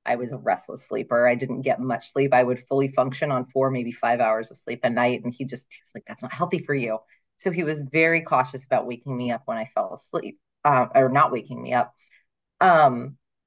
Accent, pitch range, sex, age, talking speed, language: American, 130-175 Hz, female, 30-49, 235 wpm, English